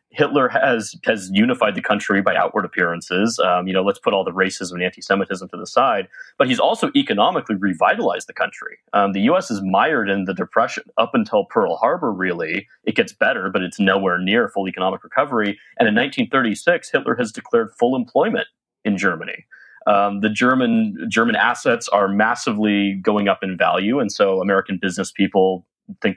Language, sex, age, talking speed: English, male, 30-49, 180 wpm